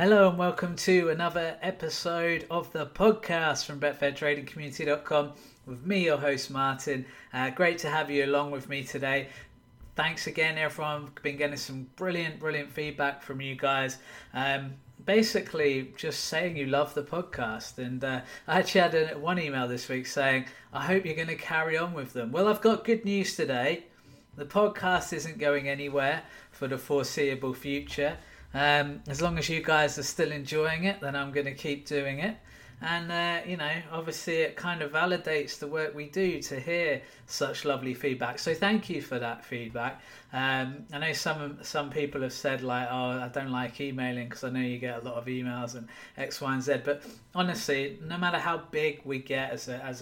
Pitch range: 130-160 Hz